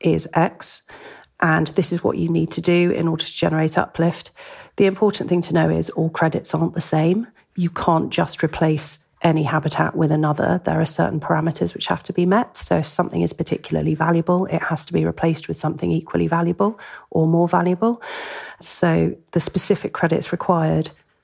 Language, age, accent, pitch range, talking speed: English, 40-59, British, 155-180 Hz, 185 wpm